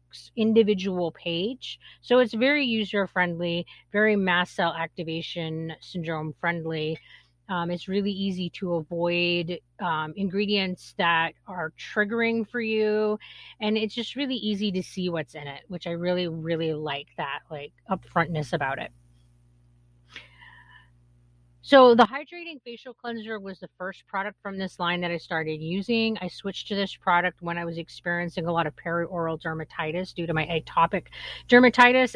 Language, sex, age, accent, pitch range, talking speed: English, female, 30-49, American, 165-215 Hz, 150 wpm